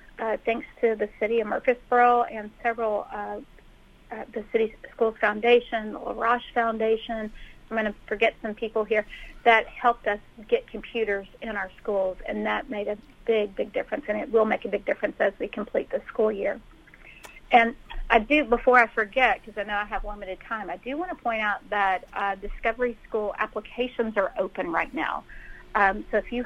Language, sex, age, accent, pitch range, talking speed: English, female, 40-59, American, 205-230 Hz, 195 wpm